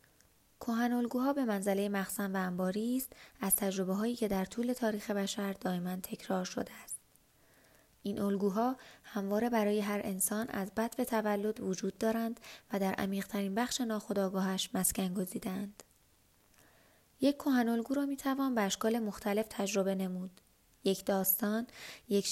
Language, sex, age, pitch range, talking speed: English, female, 20-39, 190-230 Hz, 135 wpm